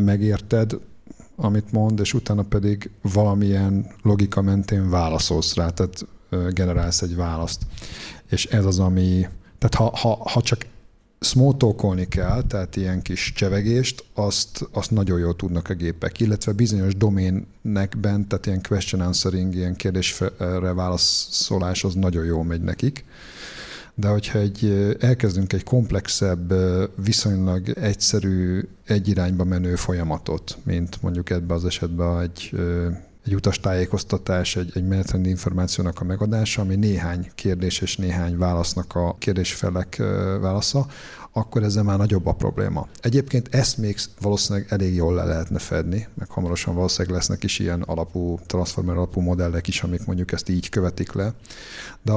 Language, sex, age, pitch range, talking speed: Hungarian, male, 50-69, 90-105 Hz, 140 wpm